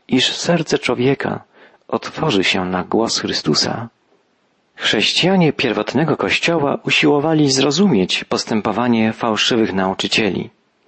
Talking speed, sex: 90 wpm, male